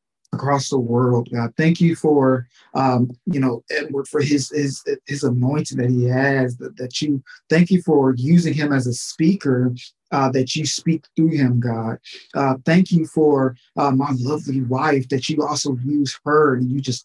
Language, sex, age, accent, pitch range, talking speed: English, male, 20-39, American, 130-160 Hz, 185 wpm